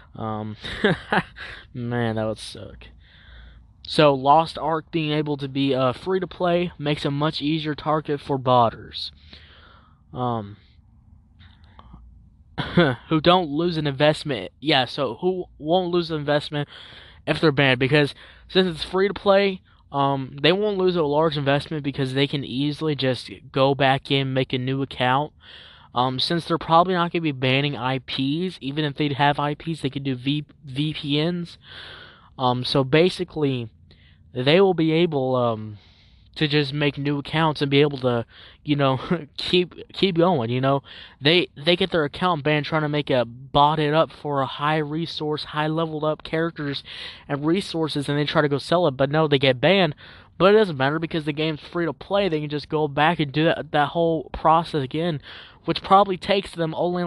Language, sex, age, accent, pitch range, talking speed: English, male, 20-39, American, 130-165 Hz, 175 wpm